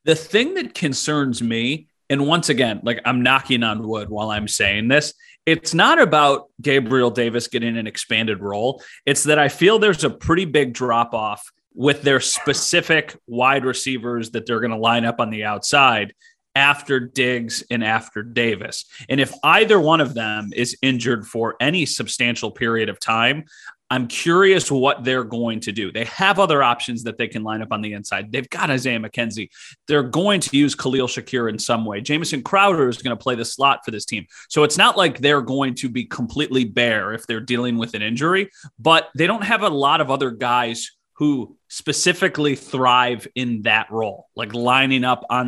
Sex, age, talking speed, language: male, 30-49, 195 wpm, English